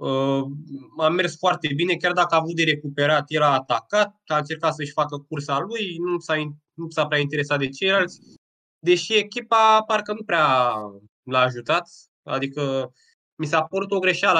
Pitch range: 145-185 Hz